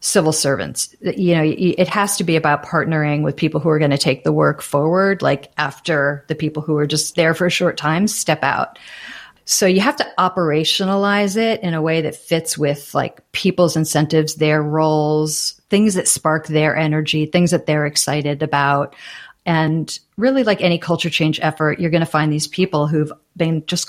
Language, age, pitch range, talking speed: English, 40-59, 155-185 Hz, 195 wpm